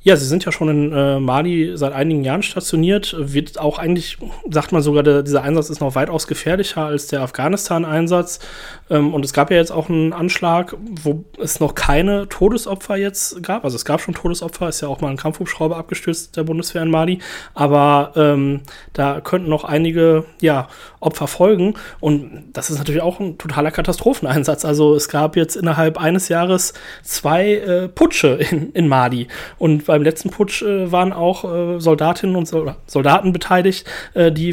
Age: 30-49